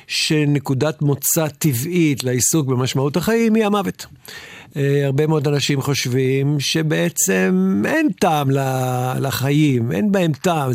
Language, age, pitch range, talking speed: Hebrew, 50-69, 135-170 Hz, 105 wpm